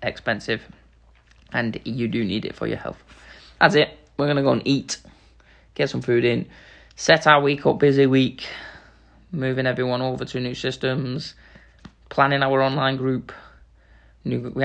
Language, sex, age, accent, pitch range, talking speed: English, male, 20-39, British, 115-135 Hz, 150 wpm